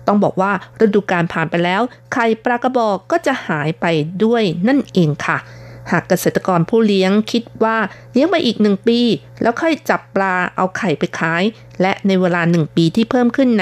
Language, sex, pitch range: Thai, female, 170-215 Hz